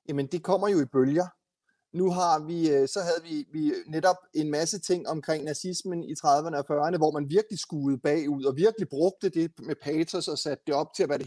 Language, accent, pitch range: Danish, native, 145-190 Hz